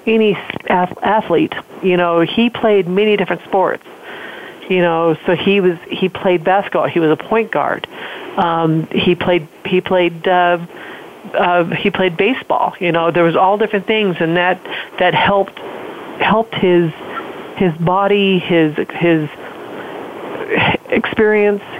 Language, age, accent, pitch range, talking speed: English, 40-59, American, 175-215 Hz, 140 wpm